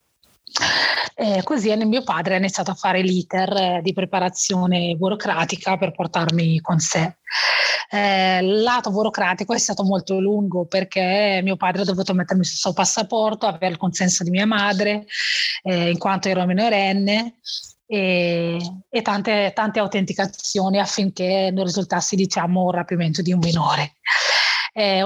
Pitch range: 185-210 Hz